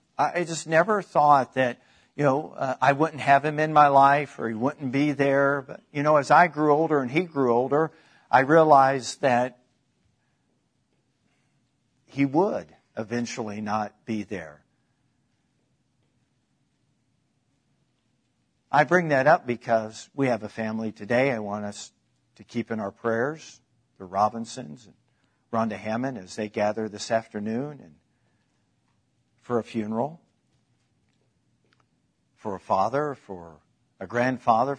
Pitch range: 120-145 Hz